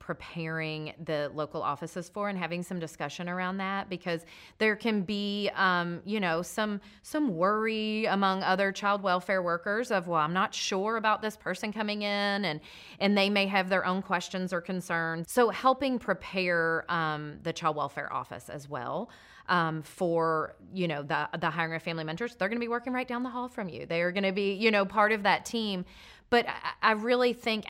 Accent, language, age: American, English, 30-49